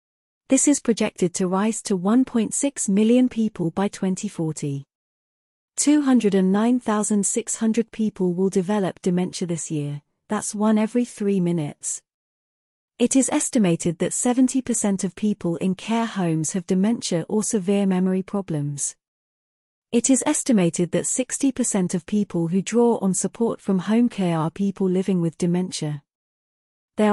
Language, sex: English, female